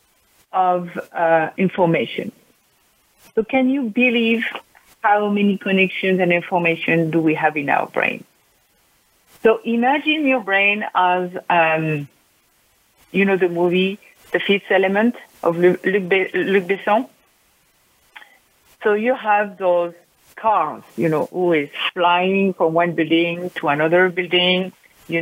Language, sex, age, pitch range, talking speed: English, female, 50-69, 175-210 Hz, 120 wpm